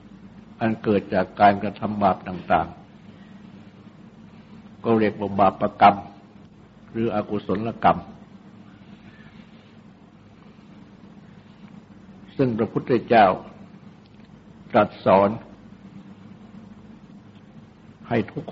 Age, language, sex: 60-79, Thai, male